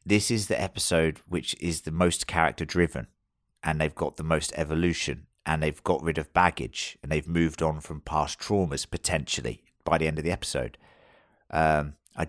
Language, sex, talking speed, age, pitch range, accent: English, male, 185 wpm, 30-49, 80-105 Hz, British